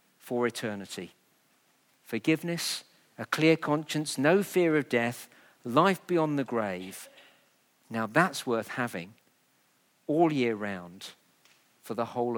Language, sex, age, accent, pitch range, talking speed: English, male, 50-69, British, 120-175 Hz, 115 wpm